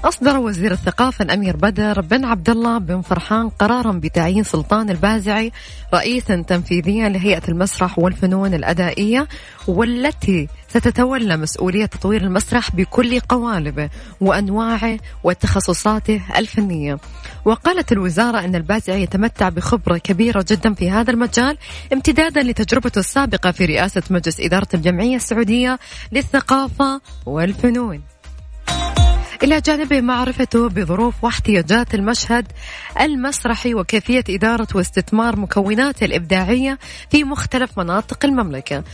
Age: 20-39